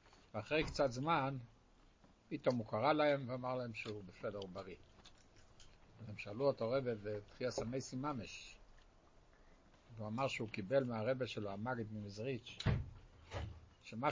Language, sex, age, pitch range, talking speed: Hebrew, male, 60-79, 110-160 Hz, 120 wpm